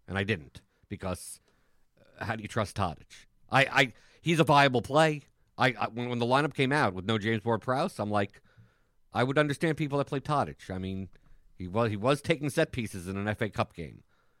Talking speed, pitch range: 215 wpm, 95-125 Hz